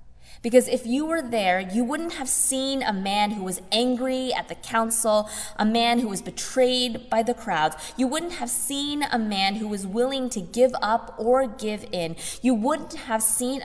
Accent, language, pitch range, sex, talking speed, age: American, English, 185-250 Hz, female, 195 wpm, 20-39